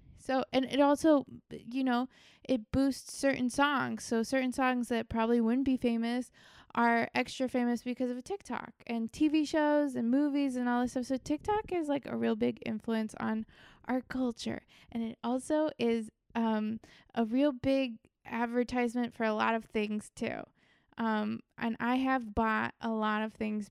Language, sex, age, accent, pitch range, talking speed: English, female, 20-39, American, 225-270 Hz, 175 wpm